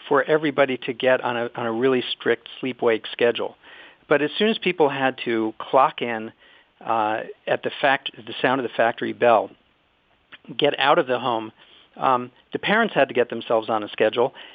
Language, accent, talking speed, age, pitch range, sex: English, American, 195 wpm, 50-69, 120-160 Hz, male